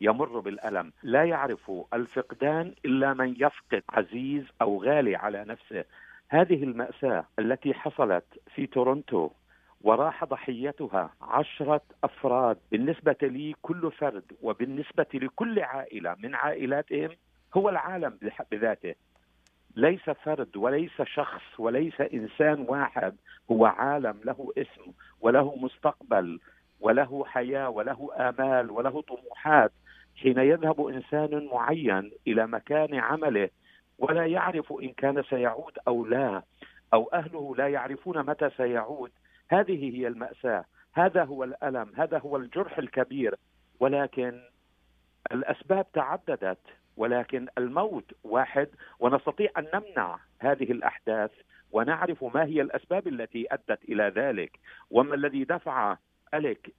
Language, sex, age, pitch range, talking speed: Arabic, male, 50-69, 125-155 Hz, 115 wpm